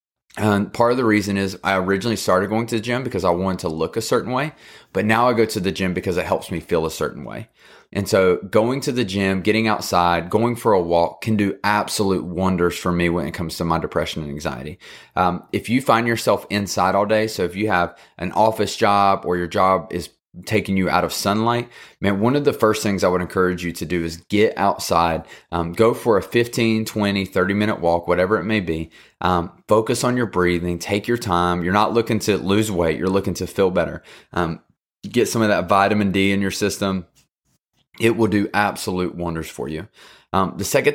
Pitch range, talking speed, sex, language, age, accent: 90-110 Hz, 225 wpm, male, English, 30-49, American